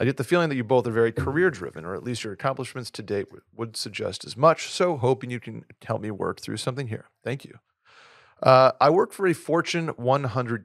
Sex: male